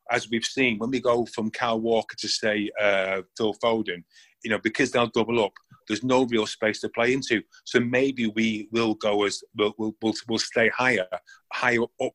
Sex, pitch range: male, 110-125 Hz